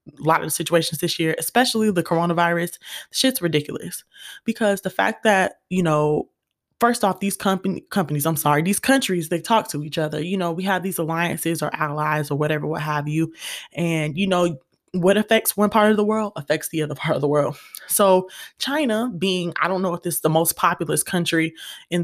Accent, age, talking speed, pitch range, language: American, 20-39, 200 wpm, 160-195 Hz, English